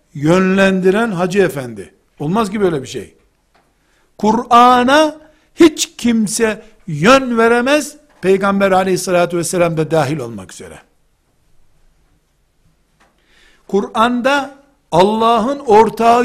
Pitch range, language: 175-230 Hz, Turkish